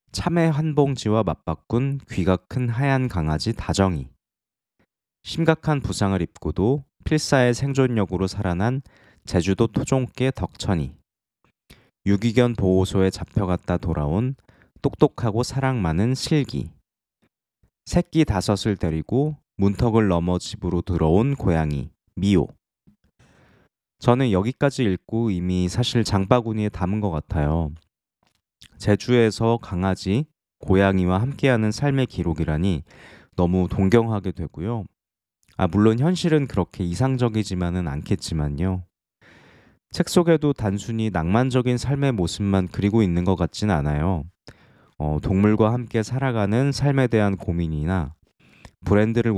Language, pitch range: Korean, 90-120 Hz